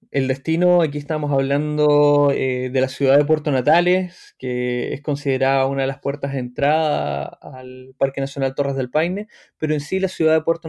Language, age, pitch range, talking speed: Spanish, 20-39, 130-150 Hz, 190 wpm